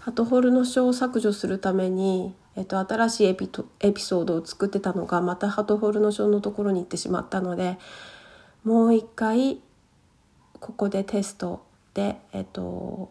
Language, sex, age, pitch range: Japanese, female, 40-59, 185-215 Hz